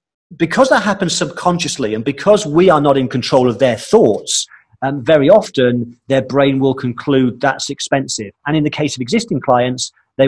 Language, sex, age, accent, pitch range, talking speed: English, male, 40-59, British, 120-155 Hz, 180 wpm